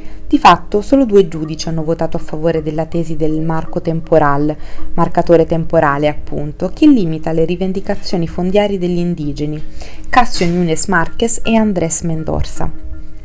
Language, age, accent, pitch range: Italian, 20-39, native, 165-205 Hz